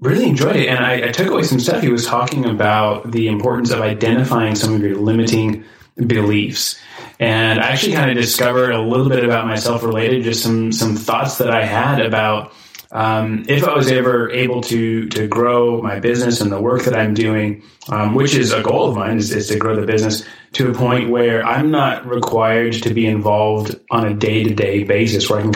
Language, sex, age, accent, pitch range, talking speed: English, male, 20-39, American, 110-125 Hz, 210 wpm